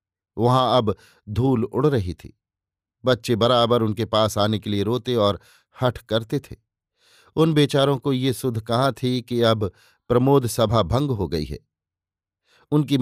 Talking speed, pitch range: 155 wpm, 105-130 Hz